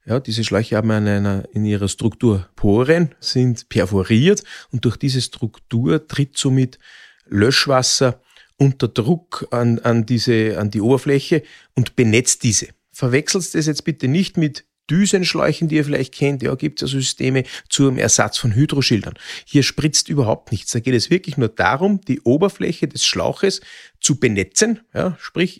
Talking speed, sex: 160 wpm, male